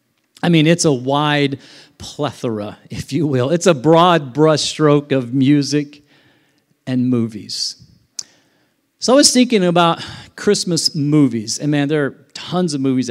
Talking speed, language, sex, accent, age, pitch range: 140 wpm, English, male, American, 40-59, 140-180 Hz